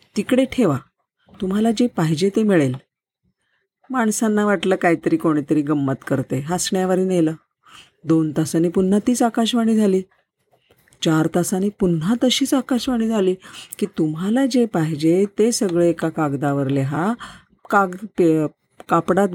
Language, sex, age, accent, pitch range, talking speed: Marathi, female, 40-59, native, 160-215 Hz, 115 wpm